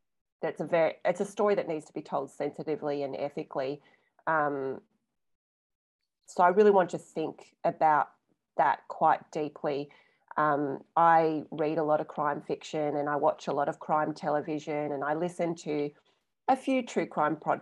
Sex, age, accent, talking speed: female, 30-49, Australian, 165 wpm